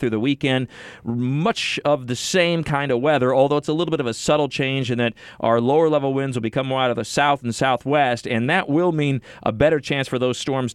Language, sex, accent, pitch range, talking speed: English, male, American, 120-150 Hz, 240 wpm